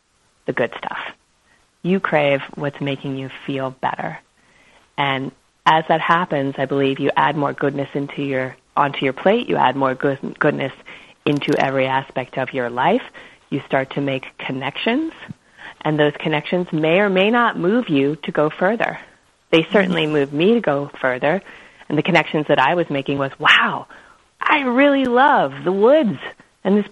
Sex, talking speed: female, 170 wpm